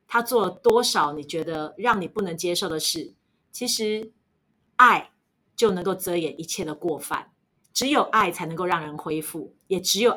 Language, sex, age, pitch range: Chinese, female, 30-49, 160-205 Hz